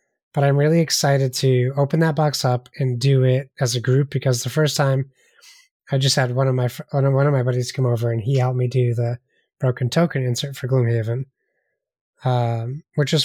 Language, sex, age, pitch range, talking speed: English, male, 20-39, 125-145 Hz, 205 wpm